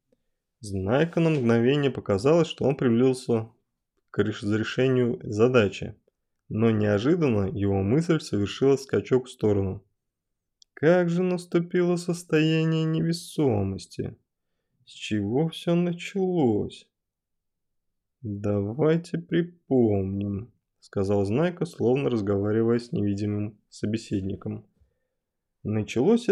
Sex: male